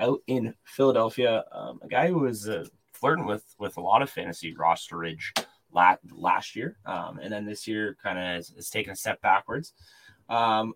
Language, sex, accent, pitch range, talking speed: English, male, American, 90-120 Hz, 190 wpm